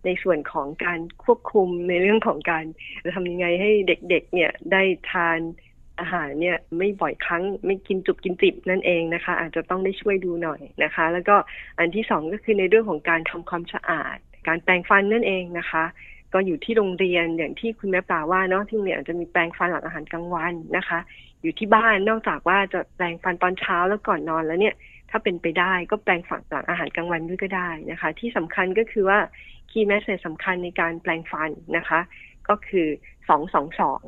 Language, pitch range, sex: Thai, 165-195 Hz, female